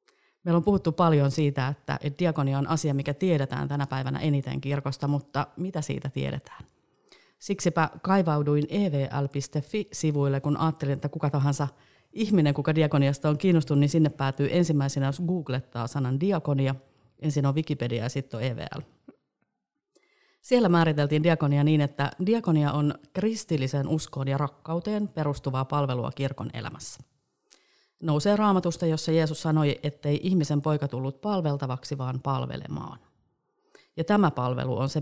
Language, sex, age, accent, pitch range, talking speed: Finnish, female, 30-49, native, 140-170 Hz, 135 wpm